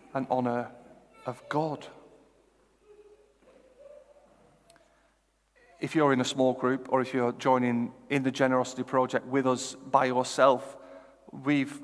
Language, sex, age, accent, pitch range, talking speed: English, male, 40-59, British, 135-160 Hz, 115 wpm